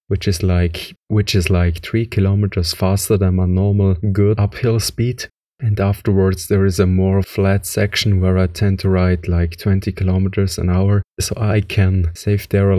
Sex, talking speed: male, 185 wpm